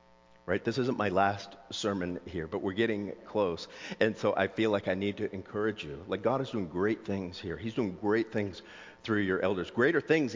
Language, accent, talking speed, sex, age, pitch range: English, American, 215 wpm, male, 50-69, 75-105 Hz